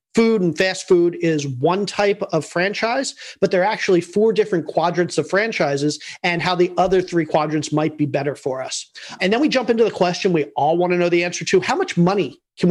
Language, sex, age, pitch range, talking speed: English, male, 40-59, 155-190 Hz, 225 wpm